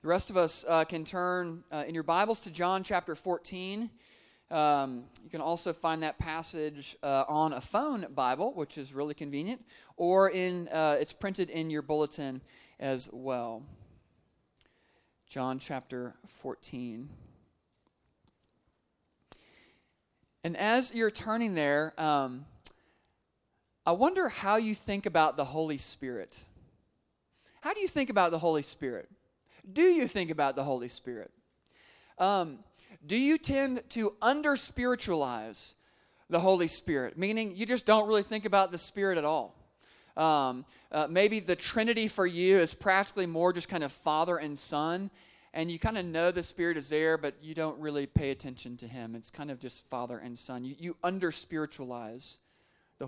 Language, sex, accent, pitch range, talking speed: English, male, American, 140-190 Hz, 160 wpm